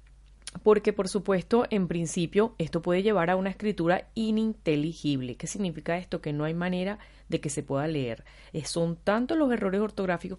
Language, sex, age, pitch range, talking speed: Spanish, female, 30-49, 155-215 Hz, 170 wpm